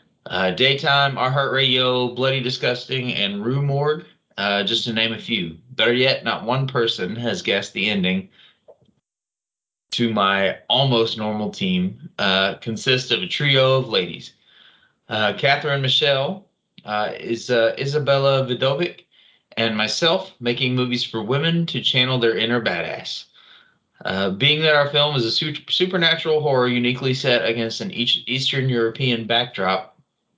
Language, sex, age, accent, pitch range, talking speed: English, male, 30-49, American, 115-140 Hz, 140 wpm